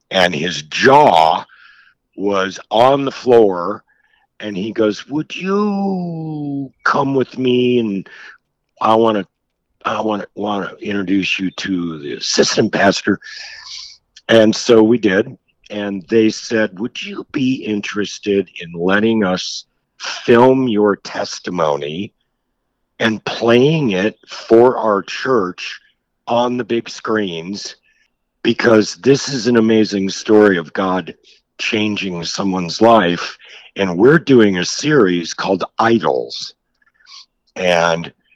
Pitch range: 95-130 Hz